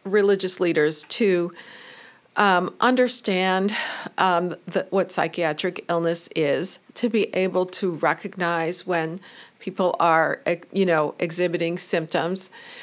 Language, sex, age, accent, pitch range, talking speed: English, female, 50-69, American, 165-200 Hz, 110 wpm